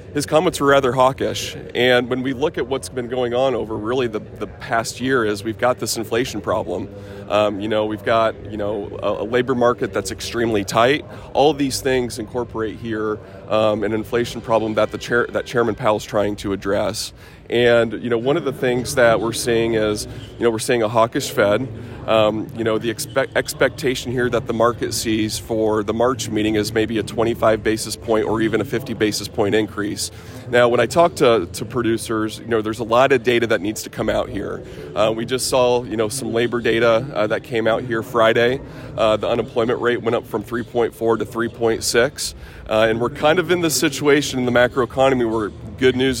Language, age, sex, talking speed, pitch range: English, 30-49, male, 210 wpm, 110-125 Hz